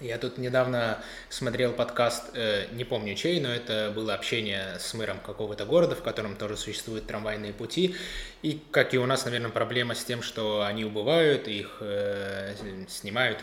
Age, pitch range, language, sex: 20-39, 105-130 Hz, Russian, male